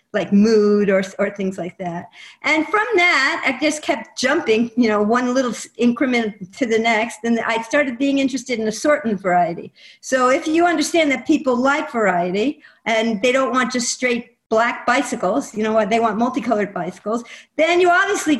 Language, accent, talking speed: English, American, 185 wpm